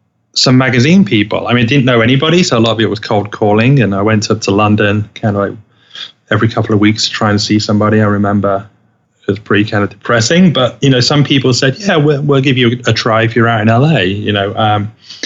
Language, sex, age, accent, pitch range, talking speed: English, male, 30-49, British, 105-135 Hz, 250 wpm